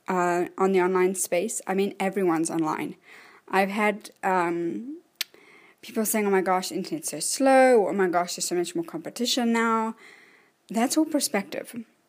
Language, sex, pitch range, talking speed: English, female, 185-245 Hz, 165 wpm